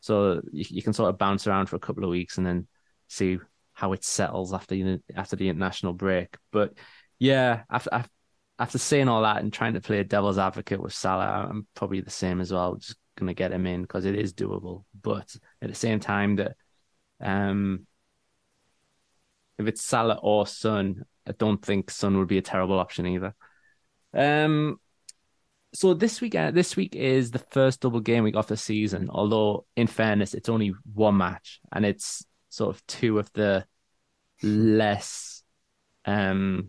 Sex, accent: male, British